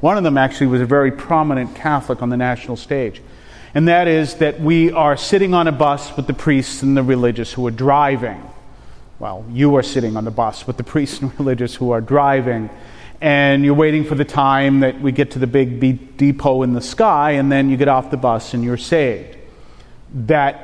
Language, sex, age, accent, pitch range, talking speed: English, male, 40-59, American, 130-160 Hz, 215 wpm